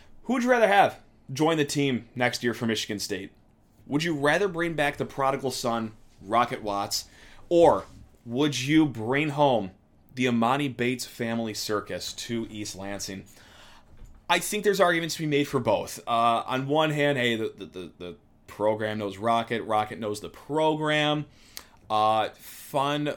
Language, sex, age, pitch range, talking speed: English, male, 30-49, 110-150 Hz, 165 wpm